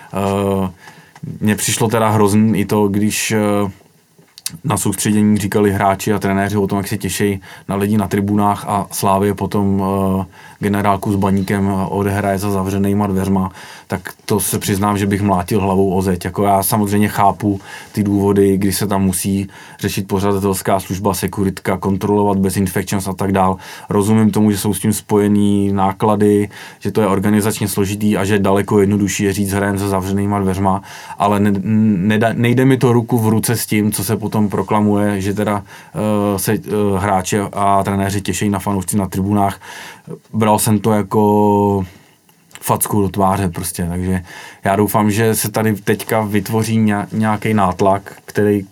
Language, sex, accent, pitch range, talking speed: Czech, male, native, 100-110 Hz, 160 wpm